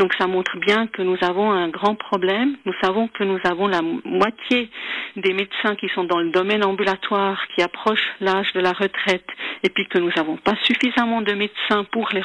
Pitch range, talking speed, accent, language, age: 185-225 Hz, 205 wpm, French, French, 50-69